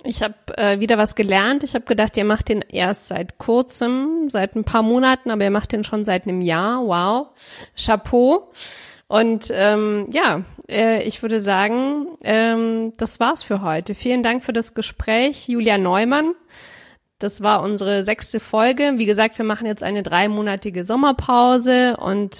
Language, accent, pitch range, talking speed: German, German, 195-240 Hz, 165 wpm